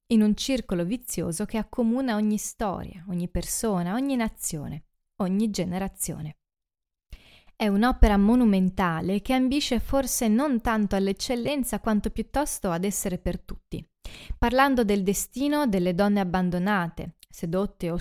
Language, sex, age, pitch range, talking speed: Italian, female, 20-39, 180-230 Hz, 125 wpm